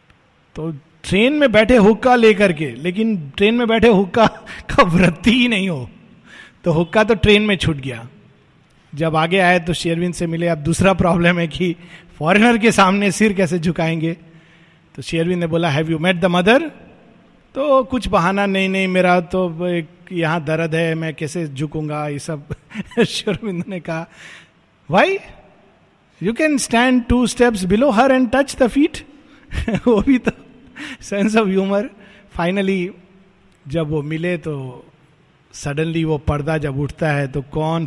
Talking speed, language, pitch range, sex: 160 wpm, Hindi, 155-200 Hz, male